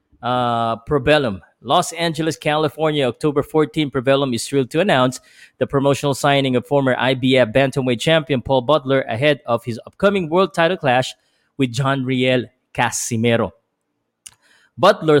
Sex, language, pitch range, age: male, Filipino, 125-155 Hz, 20-39